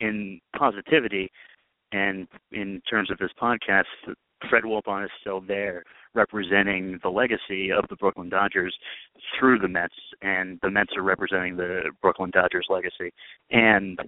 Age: 30-49